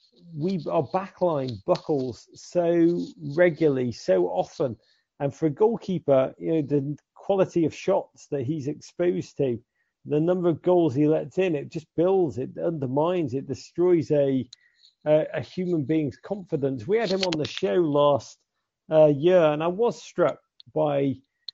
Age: 40-59